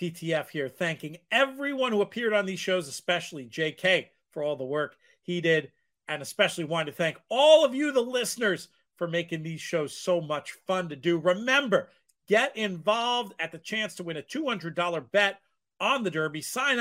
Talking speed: 180 wpm